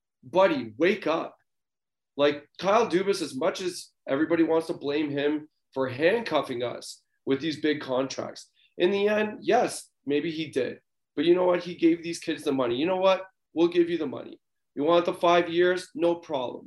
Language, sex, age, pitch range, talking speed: English, male, 30-49, 135-170 Hz, 190 wpm